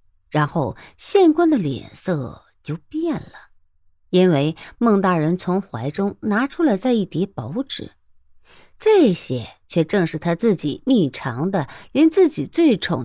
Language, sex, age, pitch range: Chinese, female, 50-69, 130-205 Hz